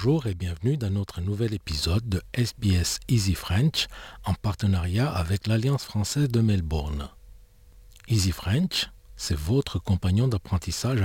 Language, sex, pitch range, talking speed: English, male, 85-105 Hz, 130 wpm